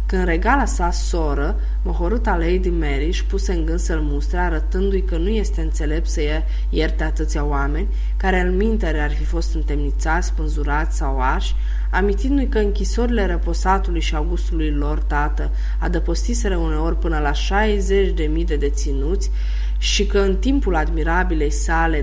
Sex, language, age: female, Romanian, 20-39